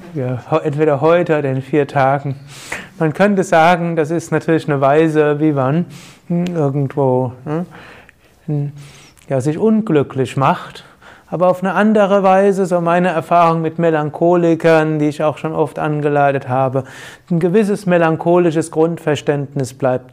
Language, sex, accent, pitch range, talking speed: German, male, German, 140-170 Hz, 130 wpm